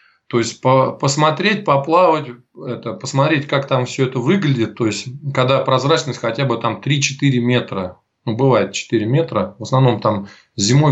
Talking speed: 160 wpm